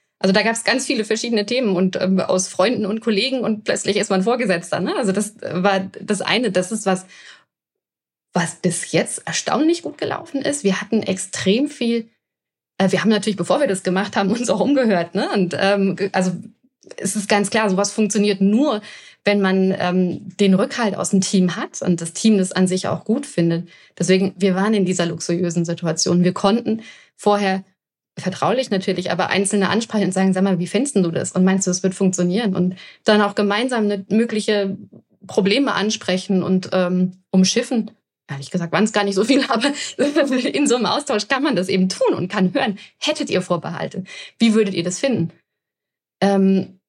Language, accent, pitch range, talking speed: German, German, 185-225 Hz, 190 wpm